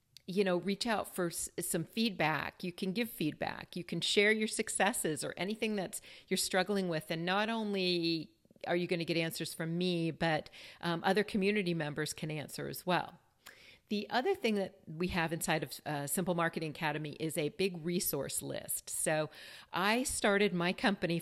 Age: 40-59